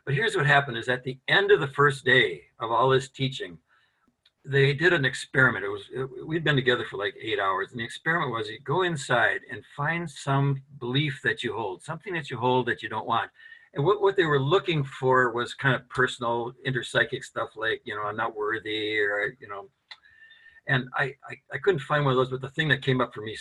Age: 60-79